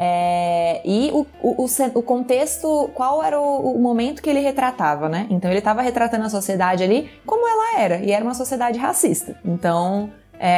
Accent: Brazilian